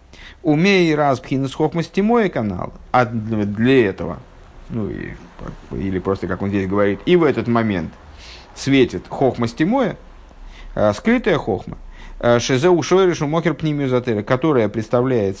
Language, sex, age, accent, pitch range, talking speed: Russian, male, 50-69, native, 105-150 Hz, 115 wpm